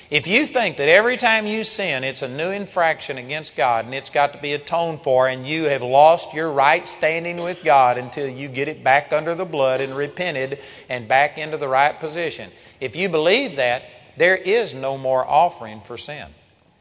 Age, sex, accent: 40-59, male, American